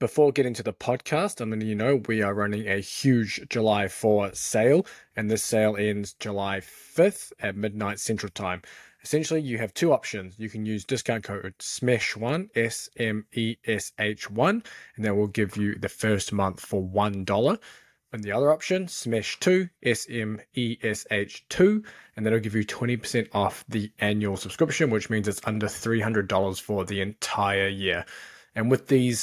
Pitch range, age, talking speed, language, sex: 100-120 Hz, 20-39, 155 wpm, English, male